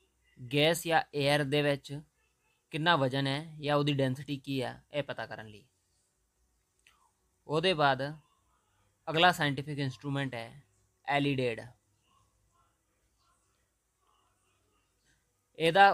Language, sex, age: Punjabi, male, 20-39